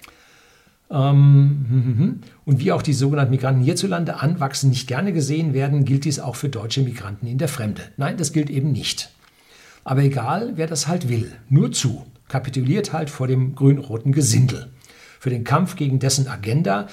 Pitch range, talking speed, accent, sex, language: 130-155 Hz, 165 wpm, German, male, German